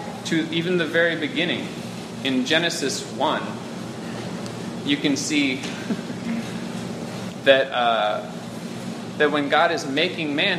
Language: English